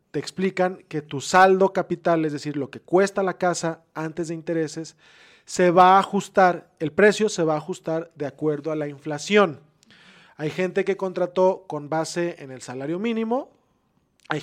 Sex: male